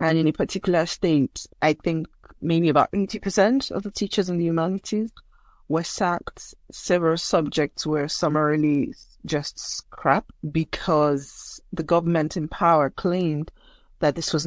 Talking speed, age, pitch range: 135 wpm, 30-49, 150-180 Hz